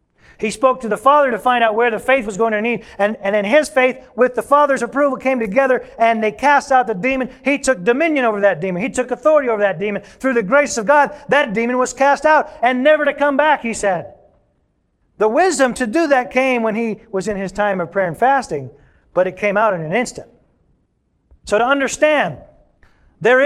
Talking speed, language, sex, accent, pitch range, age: 225 wpm, English, male, American, 205-265 Hz, 40-59